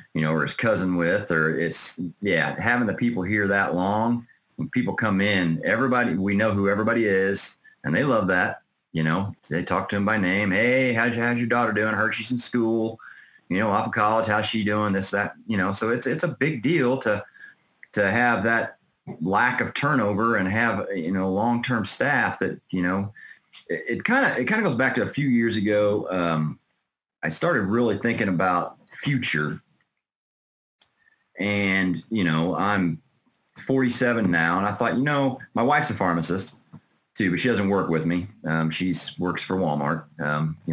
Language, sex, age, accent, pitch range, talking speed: English, male, 30-49, American, 85-110 Hz, 195 wpm